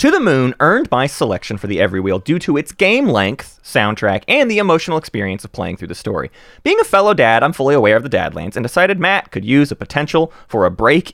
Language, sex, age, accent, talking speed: English, male, 30-49, American, 235 wpm